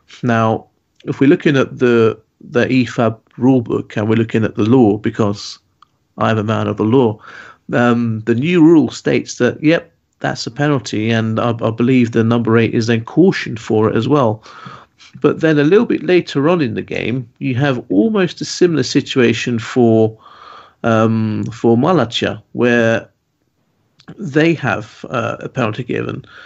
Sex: male